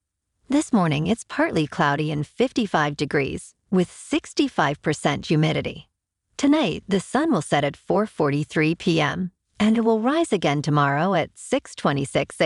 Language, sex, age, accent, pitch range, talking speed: English, female, 50-69, American, 150-225 Hz, 130 wpm